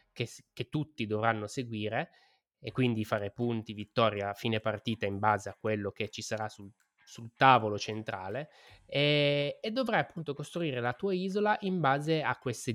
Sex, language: male, Italian